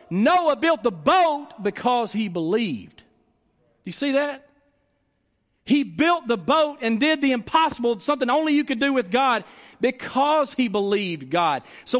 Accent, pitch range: American, 195-270 Hz